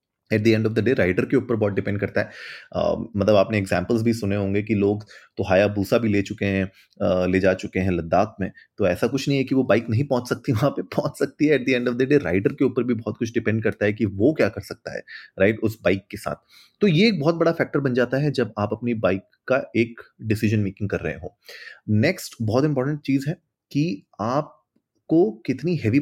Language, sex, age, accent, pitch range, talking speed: Hindi, male, 30-49, native, 105-135 Hz, 245 wpm